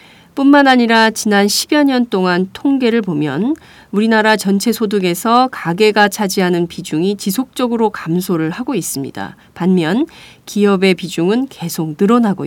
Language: Korean